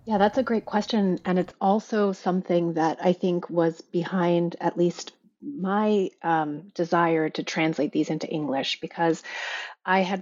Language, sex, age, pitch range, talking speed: English, female, 30-49, 160-200 Hz, 160 wpm